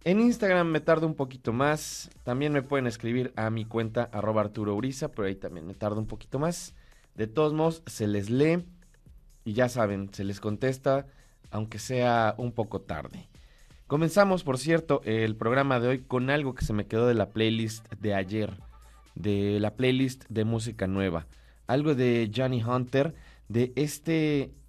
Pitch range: 110-135 Hz